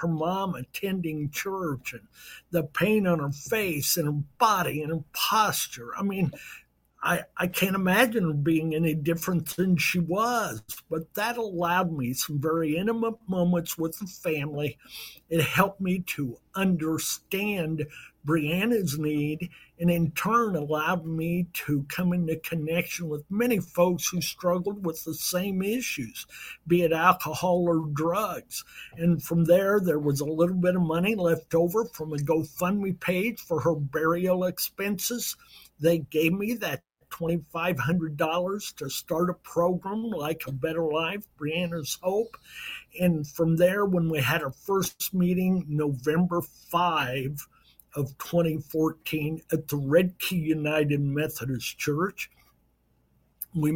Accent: American